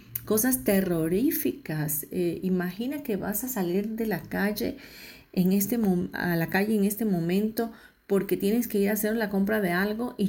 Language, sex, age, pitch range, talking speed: Spanish, female, 40-59, 175-220 Hz, 180 wpm